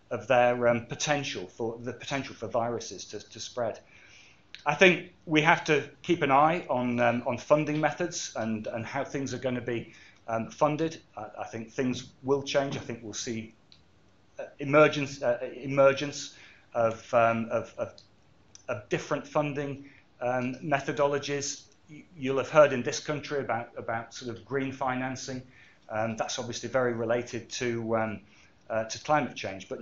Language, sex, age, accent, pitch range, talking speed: English, male, 30-49, British, 115-145 Hz, 165 wpm